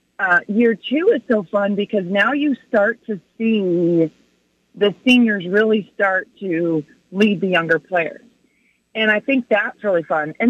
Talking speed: 160 wpm